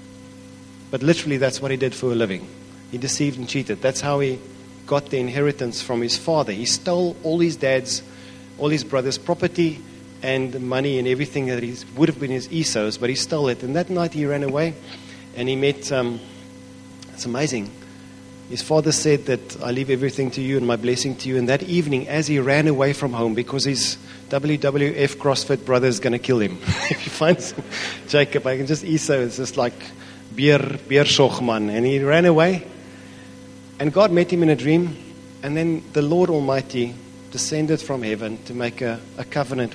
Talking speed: 190 wpm